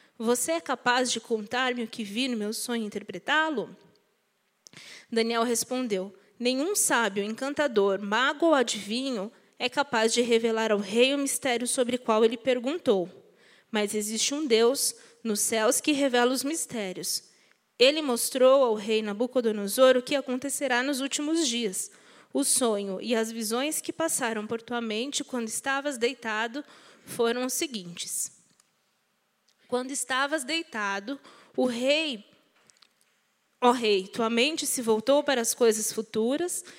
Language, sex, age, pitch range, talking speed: Portuguese, female, 20-39, 225-275 Hz, 140 wpm